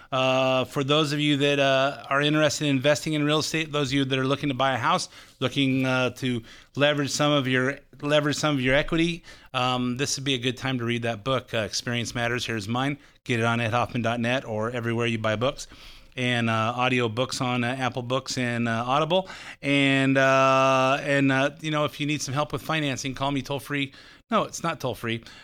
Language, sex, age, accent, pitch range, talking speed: English, male, 30-49, American, 125-150 Hz, 220 wpm